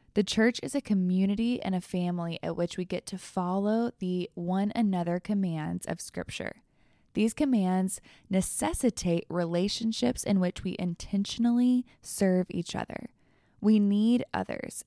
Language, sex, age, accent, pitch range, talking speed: English, female, 10-29, American, 180-220 Hz, 135 wpm